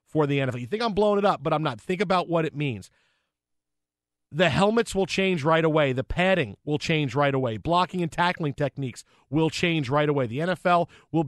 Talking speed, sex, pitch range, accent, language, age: 215 wpm, male, 120-165 Hz, American, English, 40-59